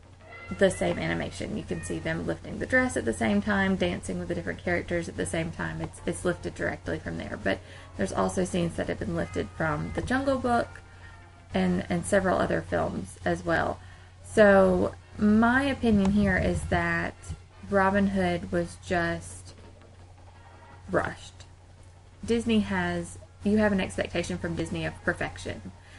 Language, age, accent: English, 20-39, American